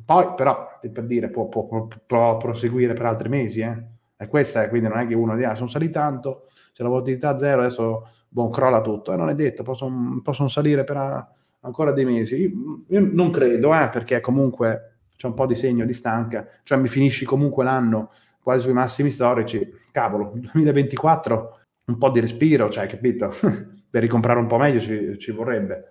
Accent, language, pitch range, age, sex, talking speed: native, Italian, 115-140 Hz, 30-49, male, 195 wpm